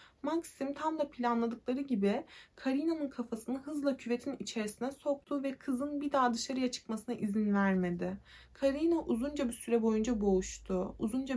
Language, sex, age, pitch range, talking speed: Turkish, female, 30-49, 220-280 Hz, 135 wpm